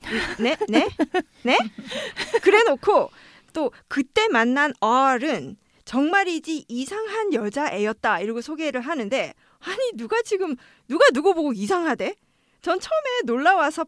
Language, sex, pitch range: Korean, female, 225-330 Hz